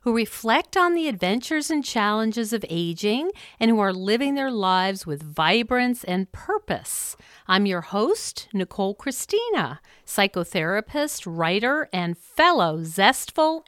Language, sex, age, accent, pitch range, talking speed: English, female, 50-69, American, 180-265 Hz, 125 wpm